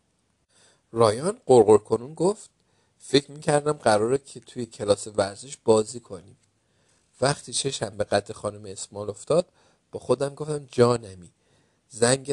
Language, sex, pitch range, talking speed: Persian, male, 105-135 Hz, 115 wpm